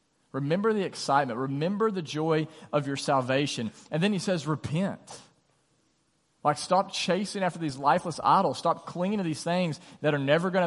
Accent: American